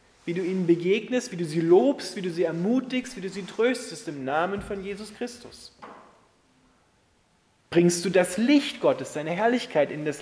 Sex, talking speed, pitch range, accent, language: male, 175 wpm, 145-205 Hz, German, German